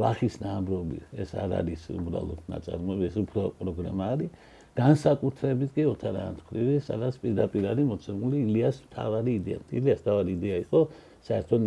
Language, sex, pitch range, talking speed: English, male, 95-125 Hz, 150 wpm